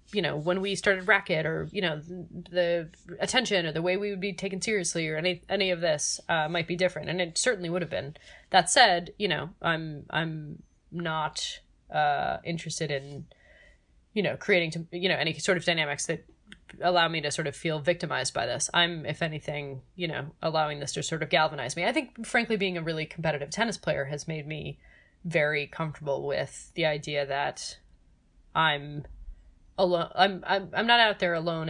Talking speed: 195 wpm